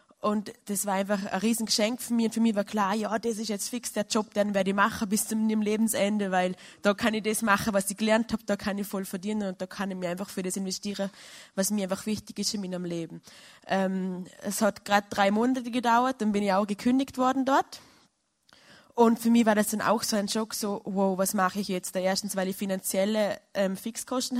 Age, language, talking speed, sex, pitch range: 20-39, German, 235 wpm, female, 195-220 Hz